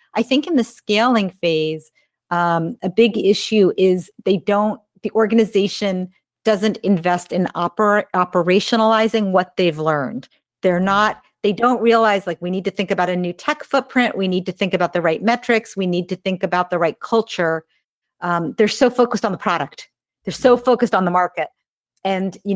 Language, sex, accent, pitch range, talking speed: English, female, American, 180-225 Hz, 180 wpm